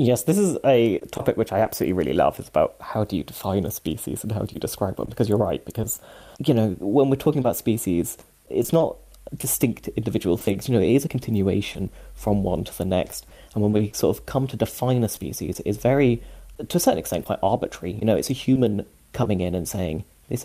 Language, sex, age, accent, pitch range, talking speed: English, male, 30-49, British, 100-130 Hz, 230 wpm